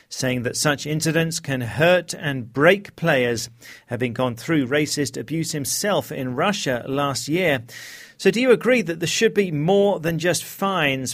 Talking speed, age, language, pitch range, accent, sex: 165 wpm, 40-59, English, 130-180 Hz, British, male